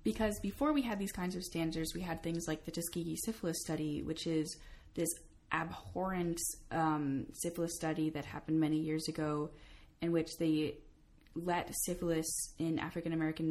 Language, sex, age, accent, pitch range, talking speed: English, female, 20-39, American, 150-170 Hz, 155 wpm